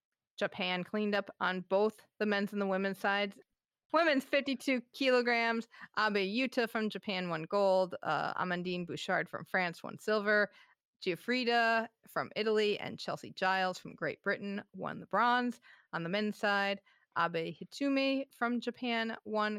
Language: English